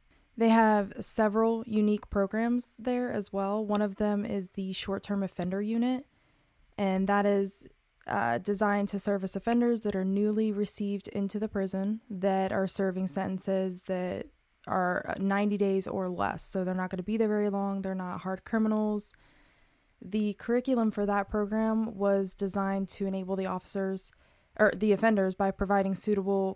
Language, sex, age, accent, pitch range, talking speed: English, female, 20-39, American, 190-215 Hz, 160 wpm